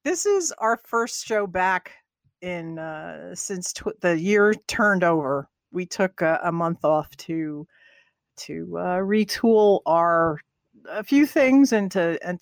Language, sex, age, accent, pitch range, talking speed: English, female, 50-69, American, 150-185 Hz, 150 wpm